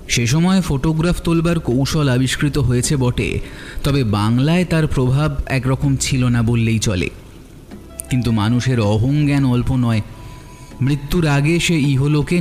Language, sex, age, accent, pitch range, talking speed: Bengali, male, 30-49, native, 120-145 Hz, 125 wpm